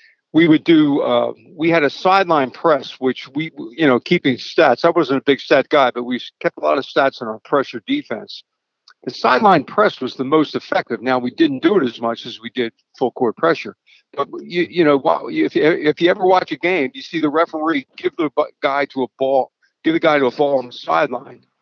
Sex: male